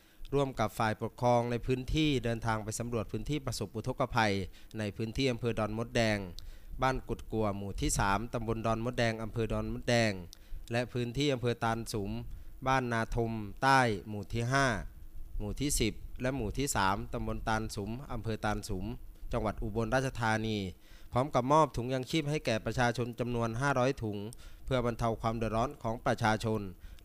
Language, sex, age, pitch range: Thai, male, 20-39, 110-125 Hz